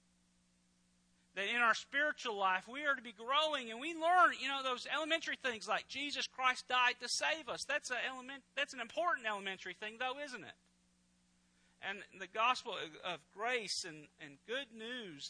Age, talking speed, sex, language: 40-59, 175 wpm, male, English